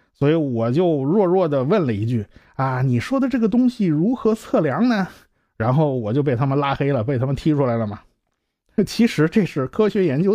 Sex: male